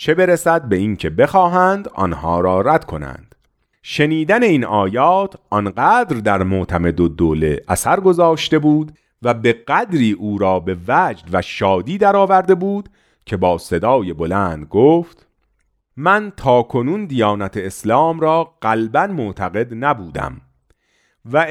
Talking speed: 130 wpm